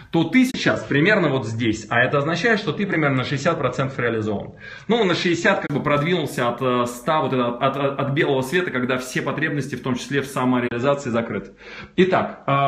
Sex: male